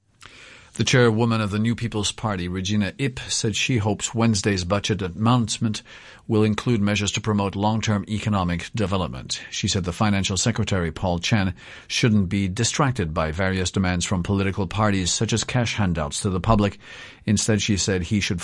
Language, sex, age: English, male, 50-69